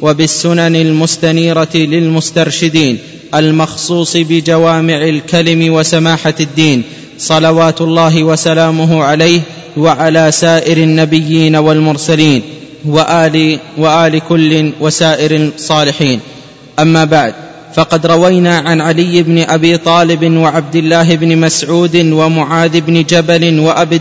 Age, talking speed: 20-39, 95 wpm